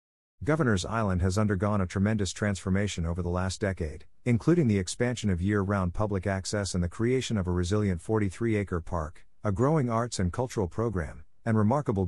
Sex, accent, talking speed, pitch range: male, American, 170 wpm, 90-115 Hz